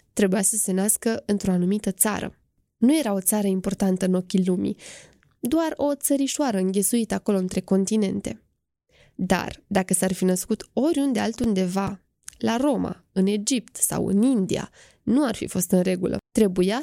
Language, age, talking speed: Romanian, 20-39, 155 wpm